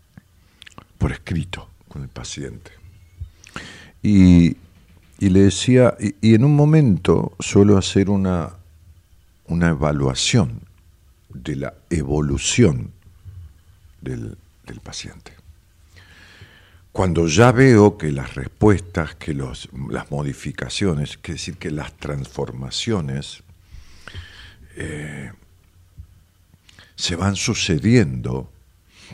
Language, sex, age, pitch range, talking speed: Spanish, male, 50-69, 80-95 Hz, 90 wpm